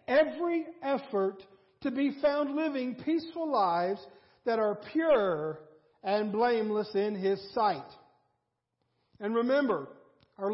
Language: English